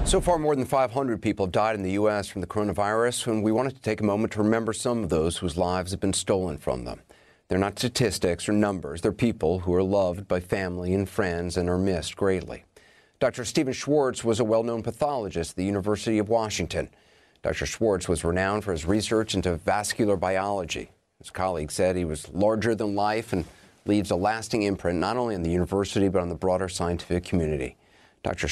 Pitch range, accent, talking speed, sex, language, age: 90-110 Hz, American, 205 wpm, male, English, 40-59